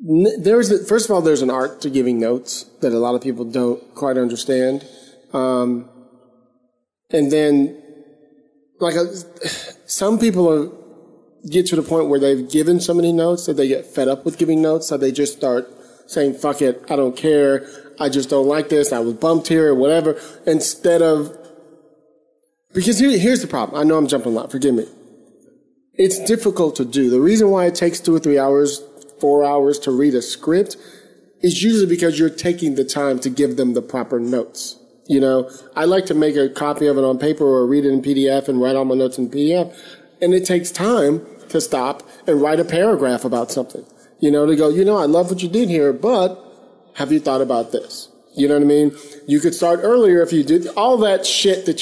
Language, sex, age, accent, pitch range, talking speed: English, male, 30-49, American, 135-170 Hz, 215 wpm